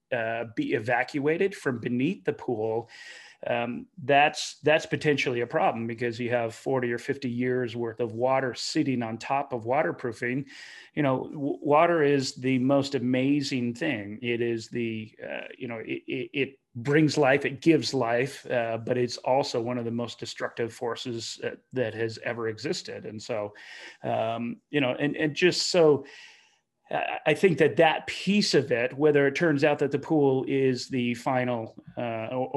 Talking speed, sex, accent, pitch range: 170 wpm, male, American, 120-145 Hz